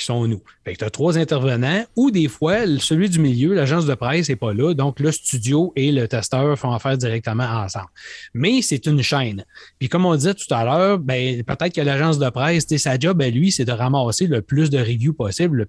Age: 30-49